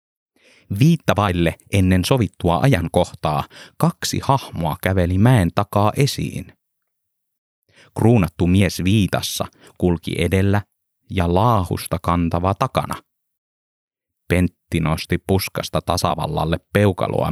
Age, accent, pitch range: 30-49, native, 85-110 Hz